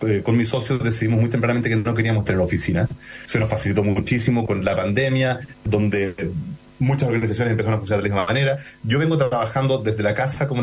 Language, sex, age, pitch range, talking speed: Spanish, male, 30-49, 110-145 Hz, 200 wpm